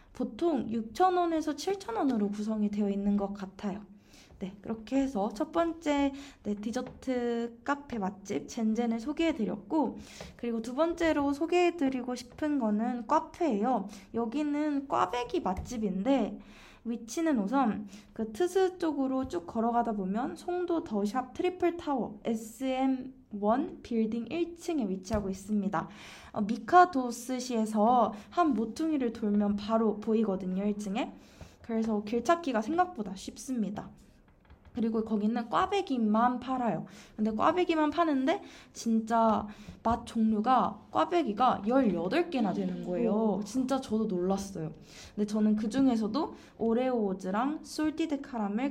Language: Korean